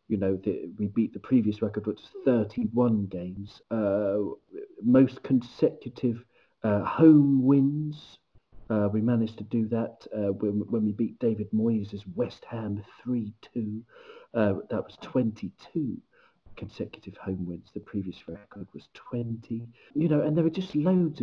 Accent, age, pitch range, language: British, 40-59, 105-135 Hz, English